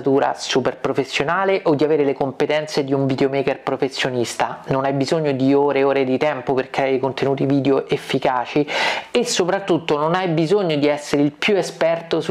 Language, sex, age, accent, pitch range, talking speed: Italian, male, 40-59, native, 140-170 Hz, 175 wpm